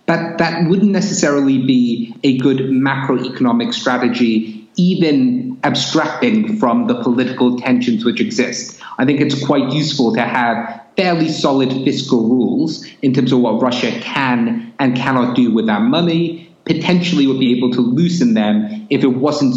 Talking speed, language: 155 wpm, English